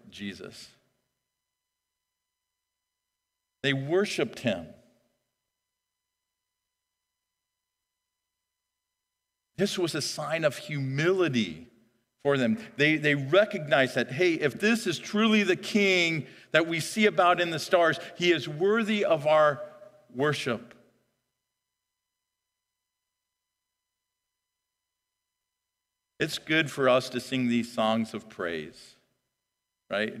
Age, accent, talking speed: 50-69, American, 95 wpm